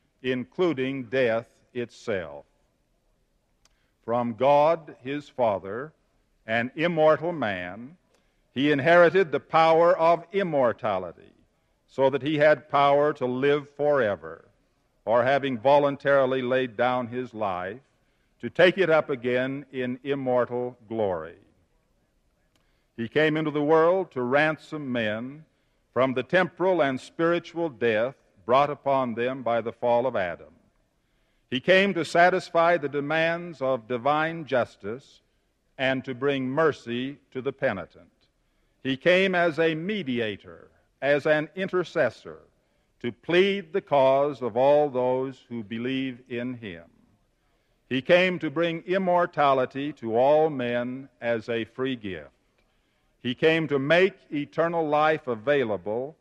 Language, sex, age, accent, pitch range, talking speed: English, male, 60-79, American, 125-160 Hz, 125 wpm